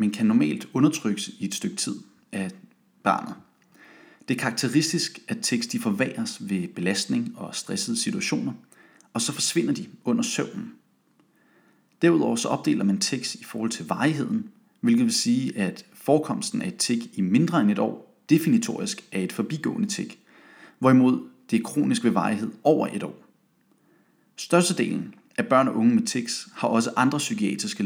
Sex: male